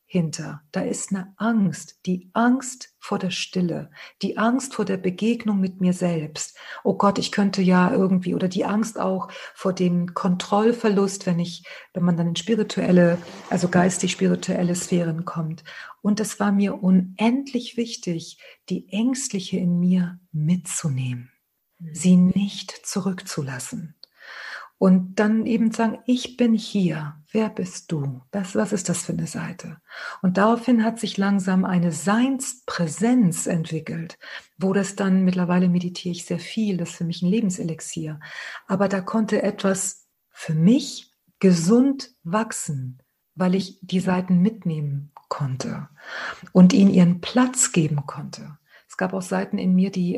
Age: 50-69